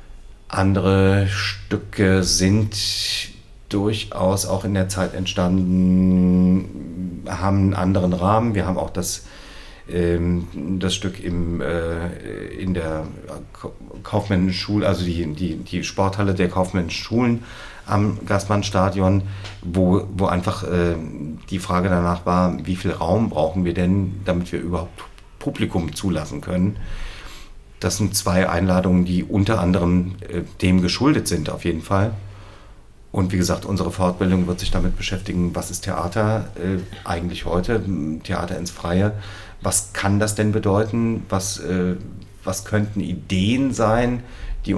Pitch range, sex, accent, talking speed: 90-105 Hz, male, German, 130 wpm